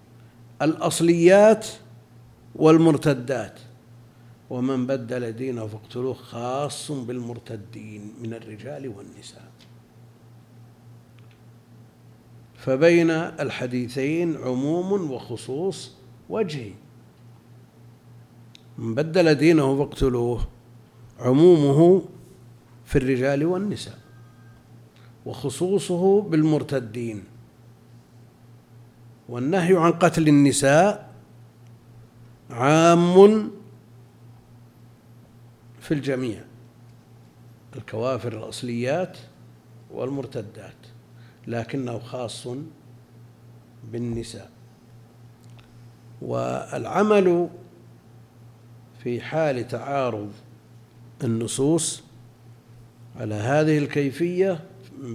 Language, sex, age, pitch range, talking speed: Arabic, male, 50-69, 115-140 Hz, 50 wpm